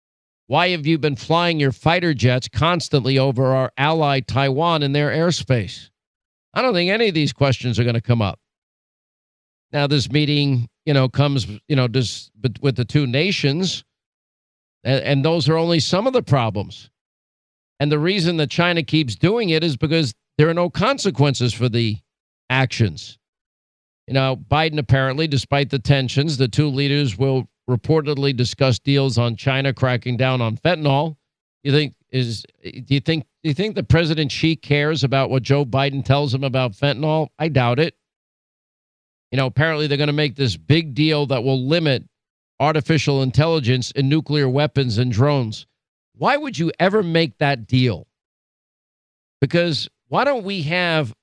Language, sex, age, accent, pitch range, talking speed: English, male, 50-69, American, 130-155 Hz, 165 wpm